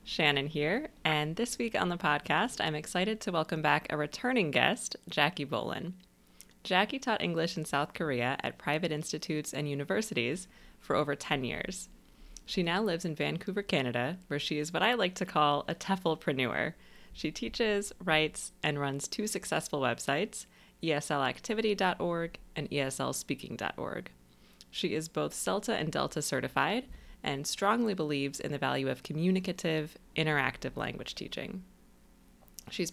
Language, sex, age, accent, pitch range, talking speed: English, female, 20-39, American, 145-185 Hz, 145 wpm